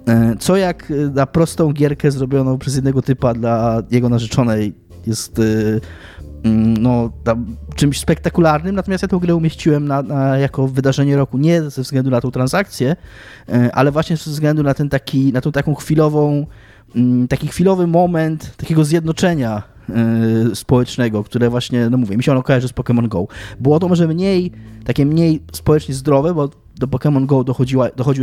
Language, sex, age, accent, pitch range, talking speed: Polish, male, 20-39, native, 115-150 Hz, 140 wpm